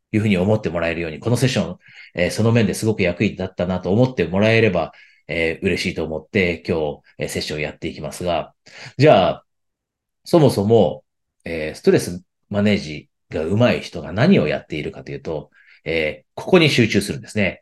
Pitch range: 85-120 Hz